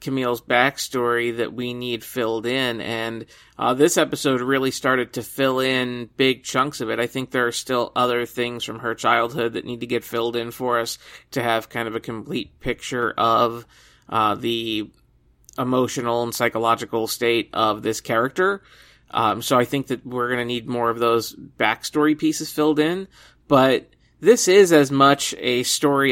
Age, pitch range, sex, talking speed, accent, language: 30-49, 120-135 Hz, male, 180 wpm, American, English